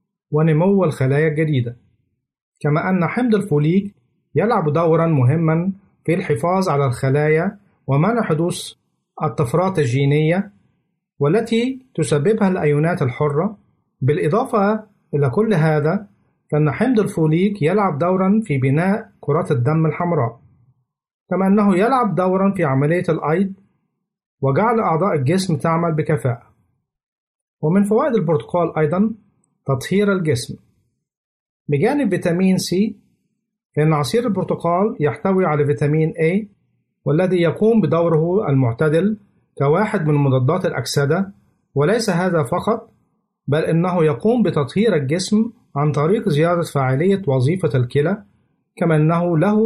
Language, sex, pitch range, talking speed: Arabic, male, 150-195 Hz, 110 wpm